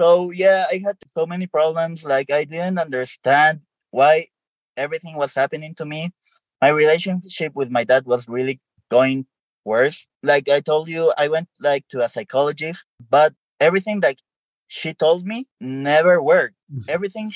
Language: English